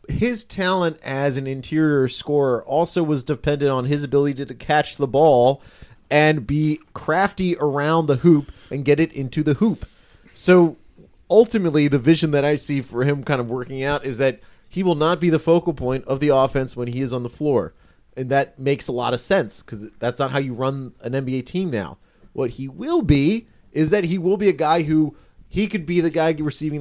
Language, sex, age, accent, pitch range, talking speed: English, male, 30-49, American, 135-170 Hz, 210 wpm